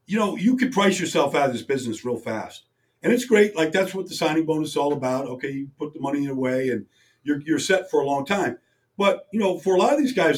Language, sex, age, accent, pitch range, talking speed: English, male, 50-69, American, 145-195 Hz, 285 wpm